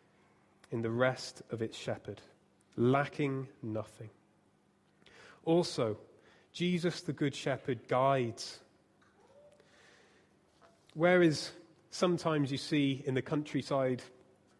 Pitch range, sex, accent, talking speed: 125-165 Hz, male, British, 85 wpm